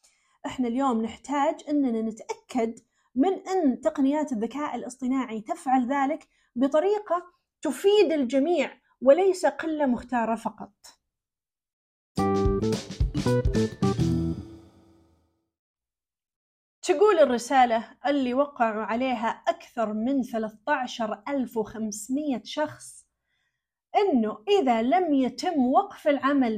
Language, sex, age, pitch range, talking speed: Arabic, female, 30-49, 225-310 Hz, 75 wpm